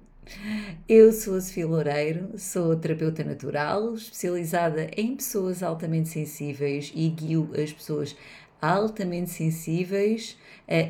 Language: Portuguese